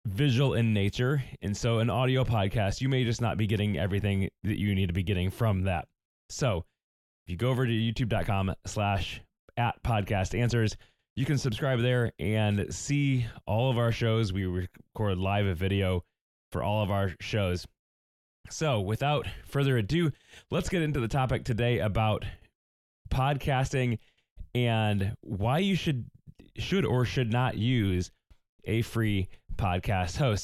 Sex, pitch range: male, 100-125 Hz